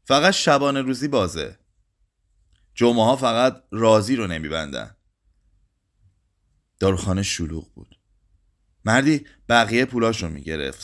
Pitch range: 95-130 Hz